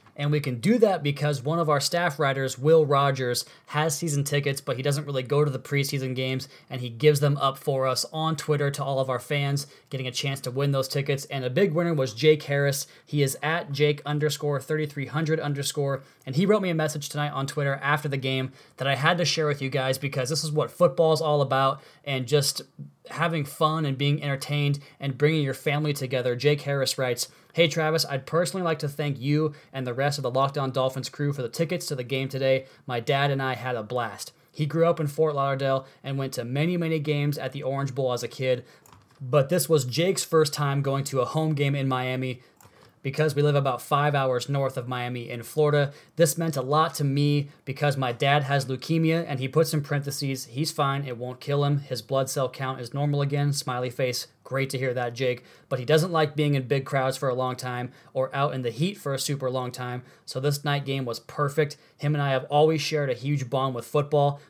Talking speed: 235 wpm